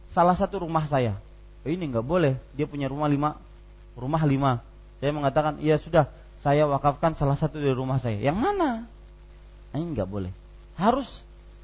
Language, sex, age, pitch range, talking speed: Malay, male, 40-59, 110-160 Hz, 165 wpm